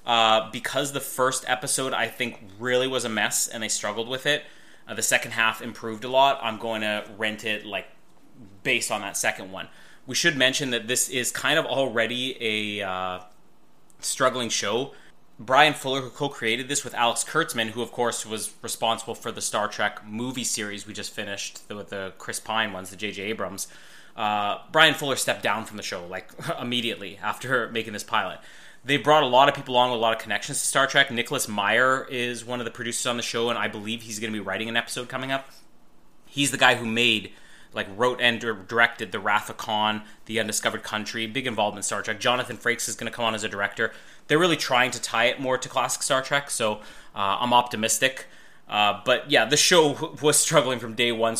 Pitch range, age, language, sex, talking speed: 110-130 Hz, 20-39, English, male, 215 wpm